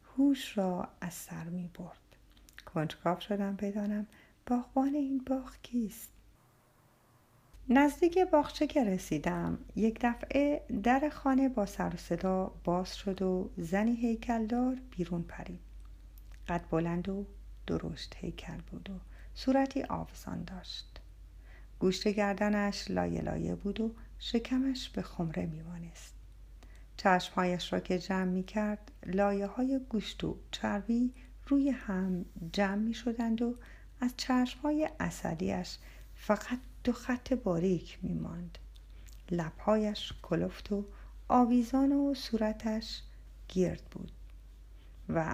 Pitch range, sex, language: 175-245 Hz, female, Persian